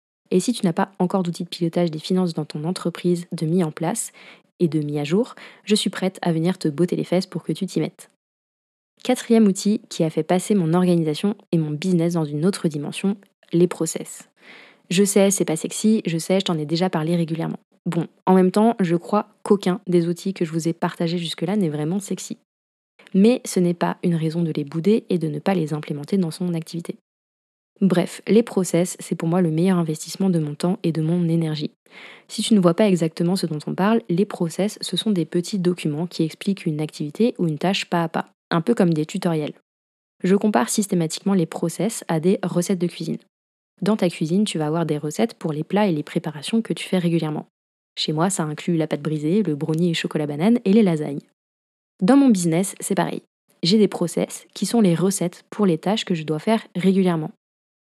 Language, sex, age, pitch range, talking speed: French, female, 20-39, 165-195 Hz, 220 wpm